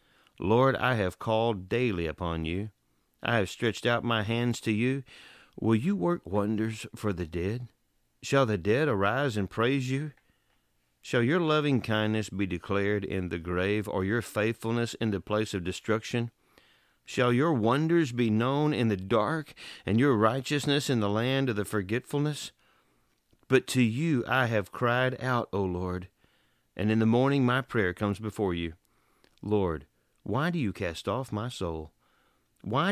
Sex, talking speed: male, 165 wpm